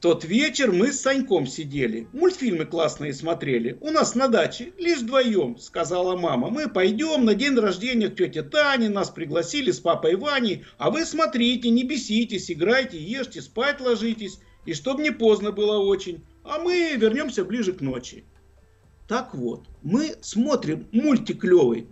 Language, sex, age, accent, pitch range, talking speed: Russian, male, 50-69, native, 160-260 Hz, 155 wpm